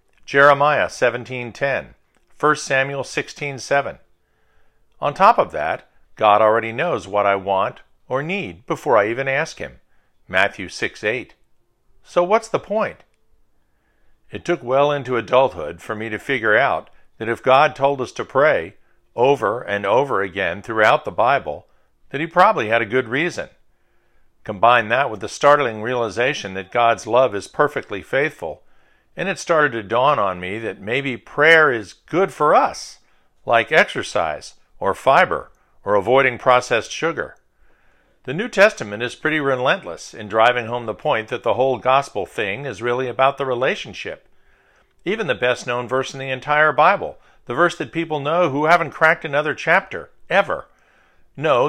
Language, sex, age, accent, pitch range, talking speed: English, male, 50-69, American, 120-145 Hz, 155 wpm